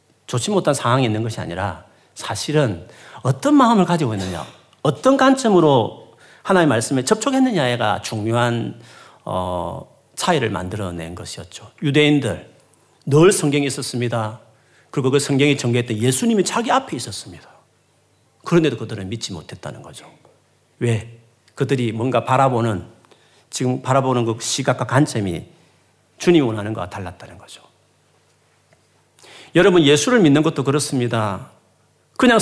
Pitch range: 110-160 Hz